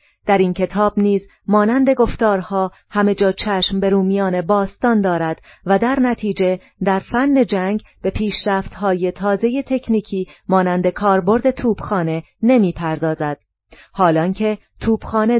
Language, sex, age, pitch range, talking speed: Persian, female, 30-49, 180-215 Hz, 115 wpm